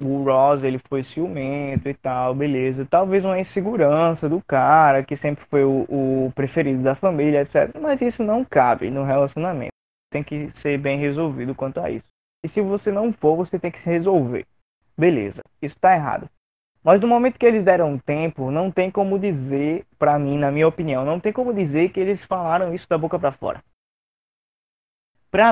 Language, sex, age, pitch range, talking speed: Portuguese, male, 20-39, 140-190 Hz, 190 wpm